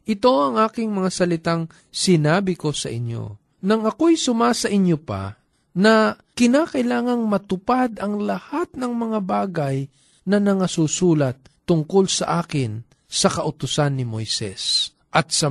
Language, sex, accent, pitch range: Filipino, male, native, 140-210 Hz